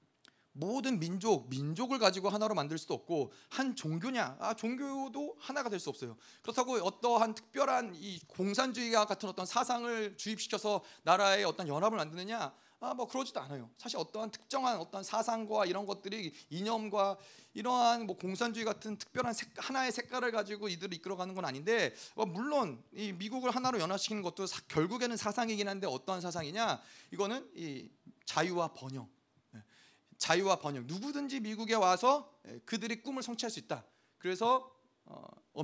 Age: 30-49